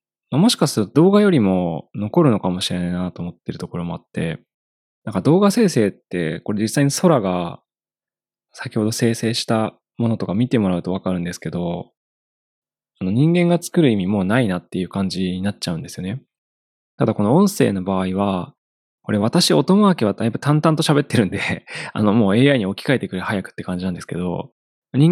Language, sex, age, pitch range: Japanese, male, 20-39, 90-140 Hz